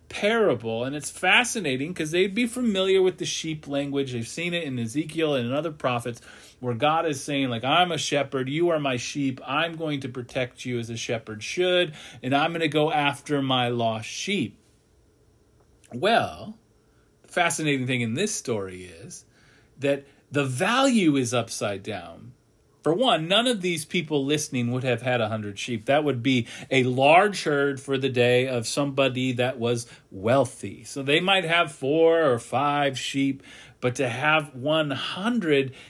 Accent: American